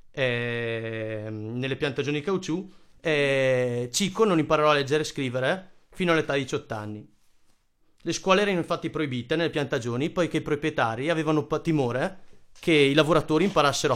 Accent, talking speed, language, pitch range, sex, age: native, 140 wpm, Italian, 125-155 Hz, male, 30-49